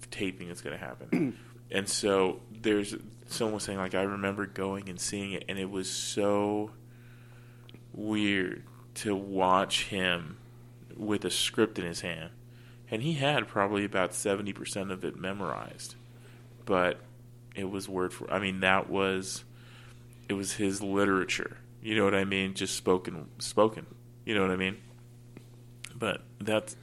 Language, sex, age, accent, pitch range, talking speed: English, male, 20-39, American, 95-120 Hz, 155 wpm